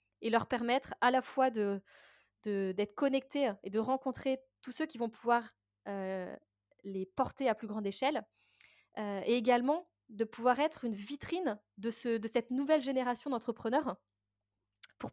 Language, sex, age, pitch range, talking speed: French, female, 20-39, 205-260 Hz, 165 wpm